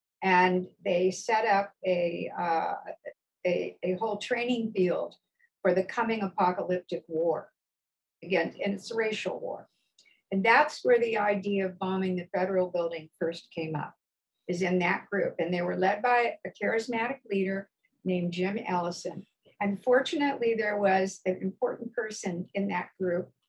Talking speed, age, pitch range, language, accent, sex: 155 wpm, 60-79, 180-210 Hz, English, American, female